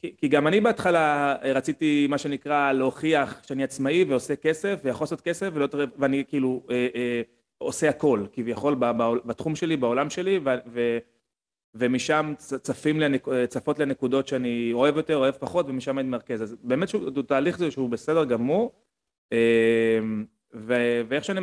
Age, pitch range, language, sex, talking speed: 30-49, 120-155 Hz, Hebrew, male, 130 wpm